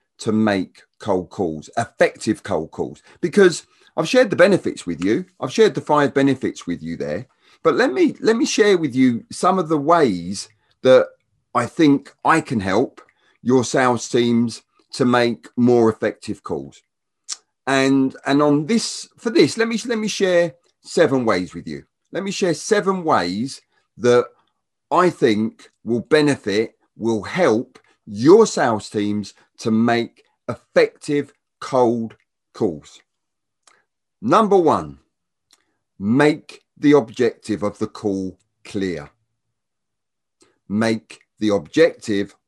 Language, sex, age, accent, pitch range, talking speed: English, male, 40-59, British, 110-180 Hz, 135 wpm